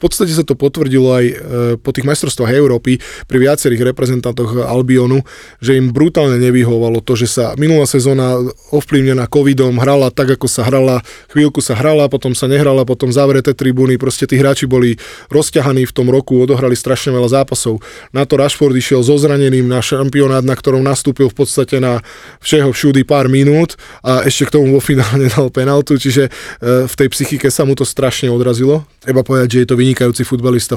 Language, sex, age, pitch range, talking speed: Slovak, male, 20-39, 125-140 Hz, 170 wpm